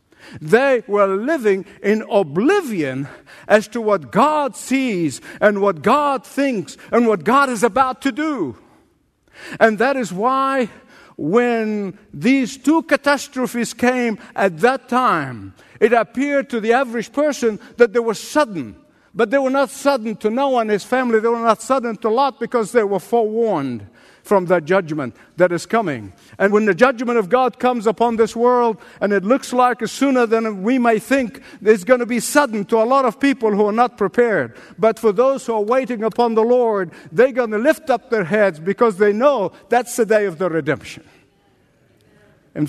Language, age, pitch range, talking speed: English, 50-69, 205-255 Hz, 180 wpm